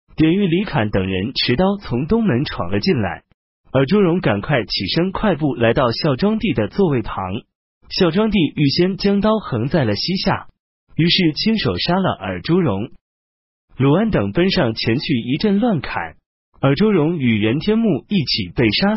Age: 30-49